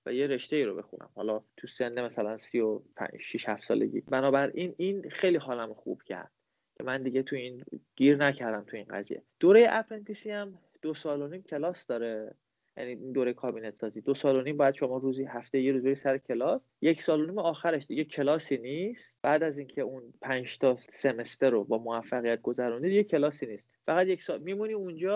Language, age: Persian, 30-49